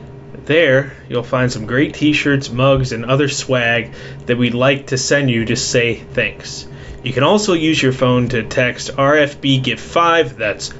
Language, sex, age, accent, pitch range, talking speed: English, male, 20-39, American, 125-150 Hz, 170 wpm